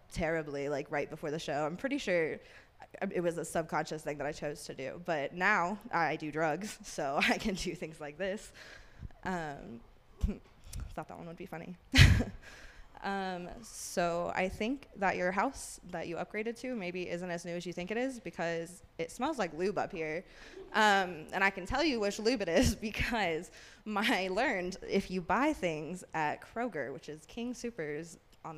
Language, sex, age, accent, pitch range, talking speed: English, female, 20-39, American, 165-220 Hz, 185 wpm